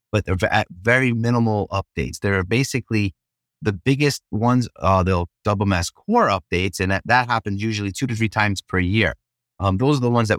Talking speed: 195 wpm